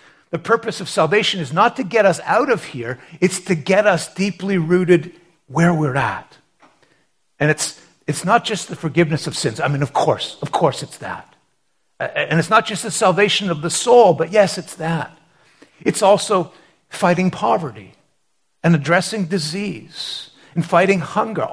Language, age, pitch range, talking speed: English, 50-69, 150-195 Hz, 170 wpm